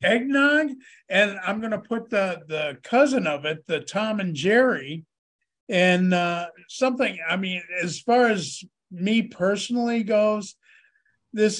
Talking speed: 140 wpm